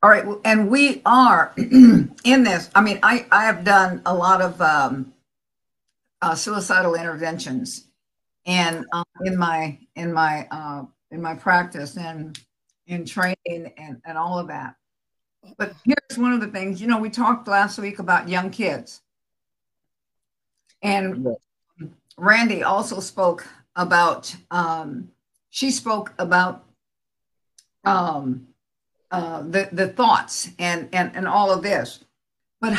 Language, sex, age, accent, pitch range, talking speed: English, female, 60-79, American, 180-235 Hz, 135 wpm